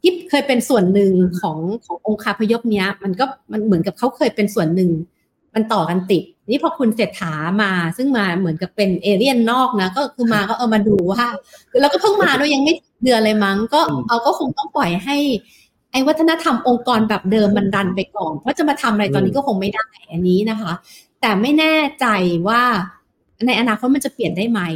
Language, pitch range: Thai, 200-260 Hz